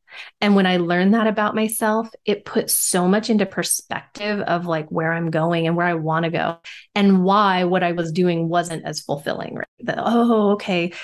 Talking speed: 195 wpm